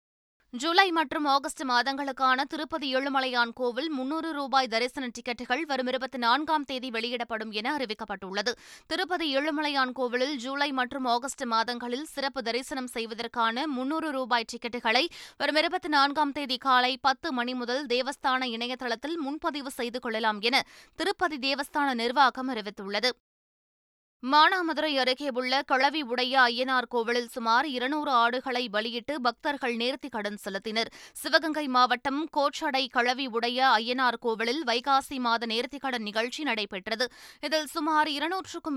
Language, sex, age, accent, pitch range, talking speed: Tamil, female, 20-39, native, 235-285 Hz, 120 wpm